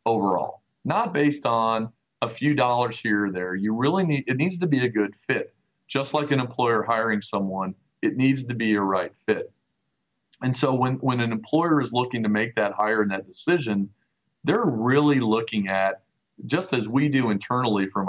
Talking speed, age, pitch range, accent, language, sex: 190 wpm, 40-59, 100-125 Hz, American, English, male